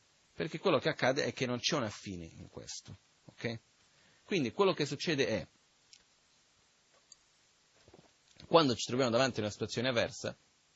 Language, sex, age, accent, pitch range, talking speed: Italian, male, 30-49, native, 100-125 Hz, 140 wpm